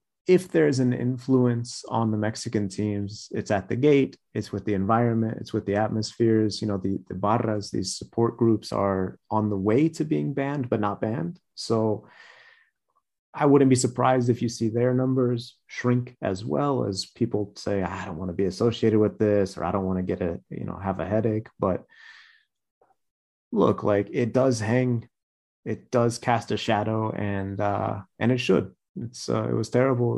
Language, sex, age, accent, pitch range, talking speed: English, male, 30-49, American, 100-120 Hz, 190 wpm